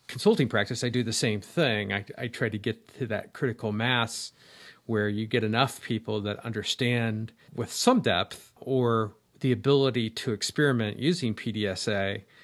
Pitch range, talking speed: 105-130 Hz, 160 wpm